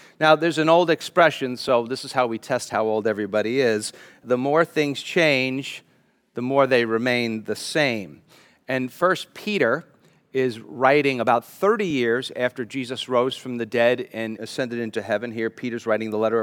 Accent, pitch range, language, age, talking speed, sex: American, 120-155 Hz, English, 40-59, 175 wpm, male